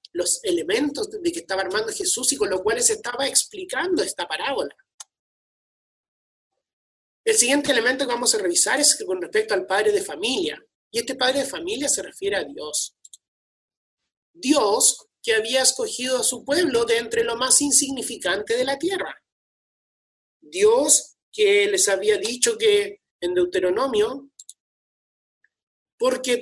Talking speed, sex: 140 wpm, male